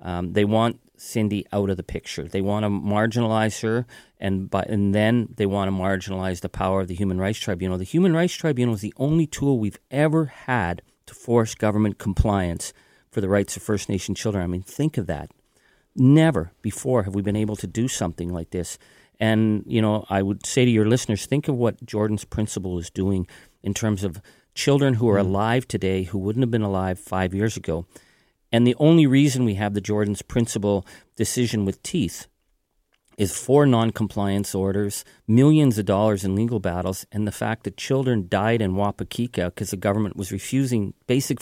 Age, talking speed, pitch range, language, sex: 40-59, 195 wpm, 100-120 Hz, English, male